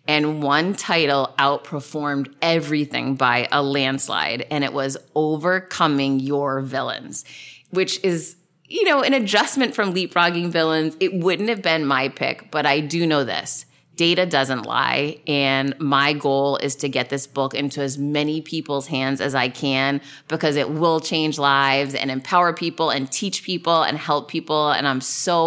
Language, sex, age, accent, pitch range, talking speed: English, female, 30-49, American, 140-165 Hz, 165 wpm